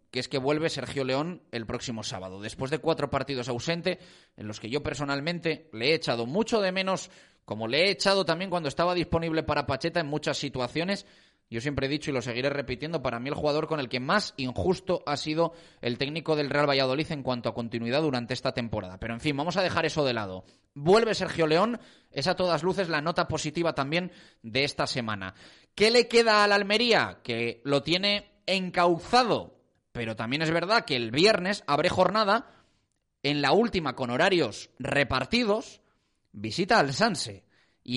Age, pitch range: 20-39, 135-190 Hz